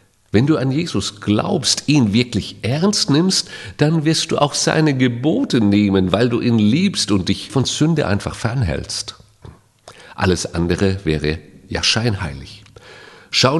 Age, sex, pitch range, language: 50-69, male, 95-135 Hz, German